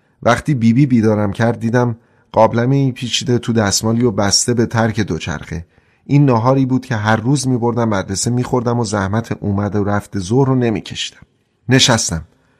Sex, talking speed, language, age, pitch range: male, 165 wpm, Persian, 30-49, 110-135 Hz